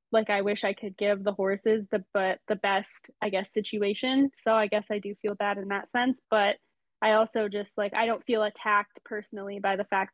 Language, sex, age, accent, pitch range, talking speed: English, female, 10-29, American, 195-220 Hz, 225 wpm